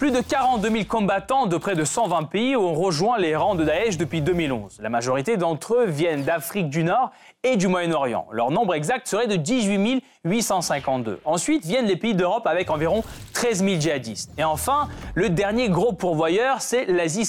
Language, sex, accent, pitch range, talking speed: French, male, French, 160-230 Hz, 185 wpm